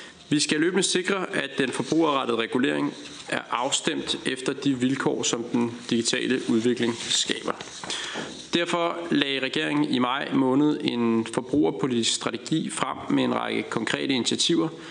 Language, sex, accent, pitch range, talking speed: Danish, male, native, 125-175 Hz, 135 wpm